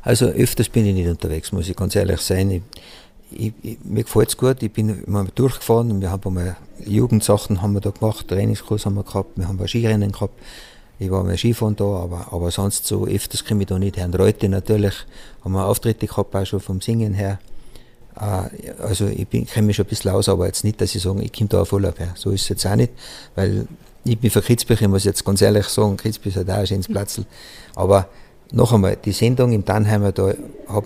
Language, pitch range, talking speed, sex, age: German, 95-110 Hz, 230 wpm, male, 50-69